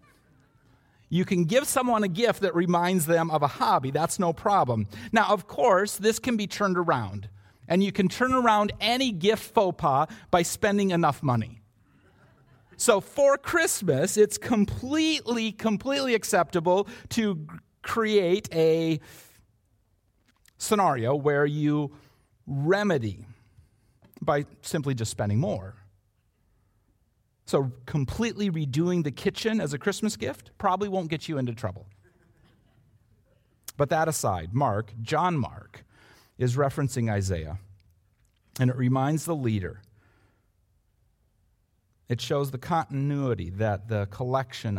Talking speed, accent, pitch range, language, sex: 120 wpm, American, 105-170 Hz, English, male